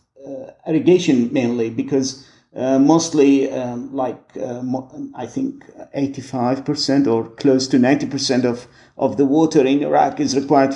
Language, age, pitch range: English, 50-69, 130-170 Hz